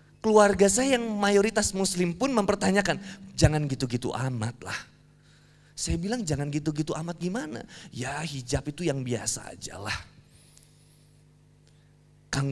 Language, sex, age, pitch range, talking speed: Indonesian, male, 30-49, 130-185 Hz, 115 wpm